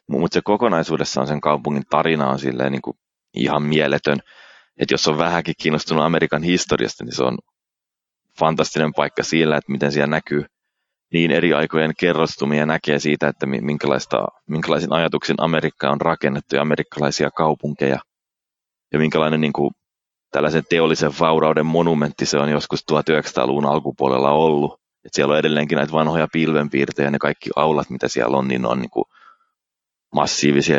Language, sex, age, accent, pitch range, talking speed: Finnish, male, 20-39, native, 70-80 Hz, 145 wpm